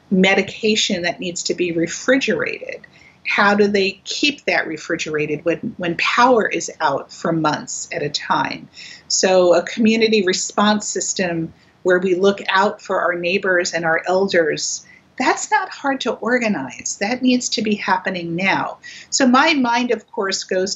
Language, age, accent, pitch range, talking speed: English, 50-69, American, 185-240 Hz, 155 wpm